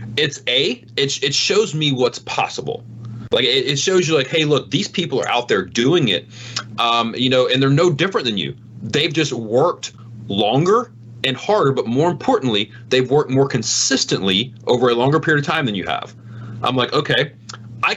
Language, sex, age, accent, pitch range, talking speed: English, male, 30-49, American, 115-160 Hz, 195 wpm